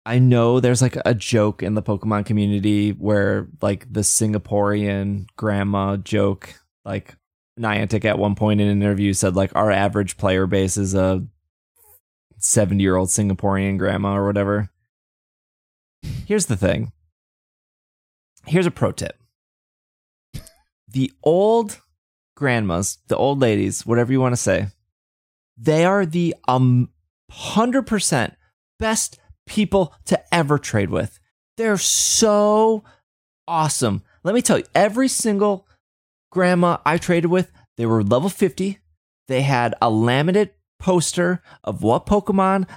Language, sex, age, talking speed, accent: English, male, 20-39, 130 wpm, American